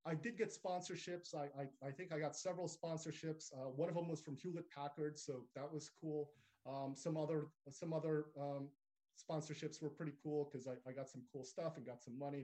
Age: 30-49